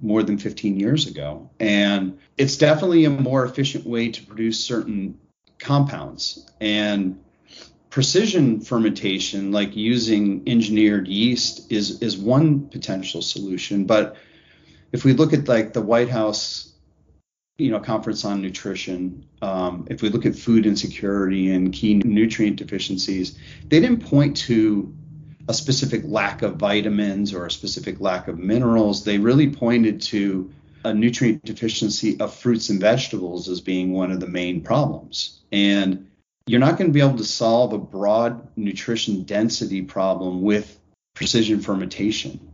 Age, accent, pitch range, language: 30-49, American, 95-115 Hz, English